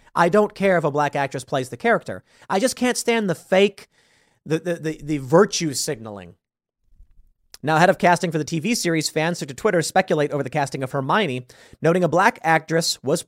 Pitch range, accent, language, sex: 130-175 Hz, American, English, male